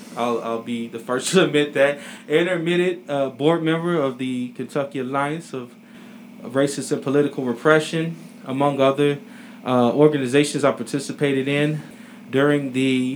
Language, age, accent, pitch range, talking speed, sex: English, 20-39, American, 125-155 Hz, 135 wpm, male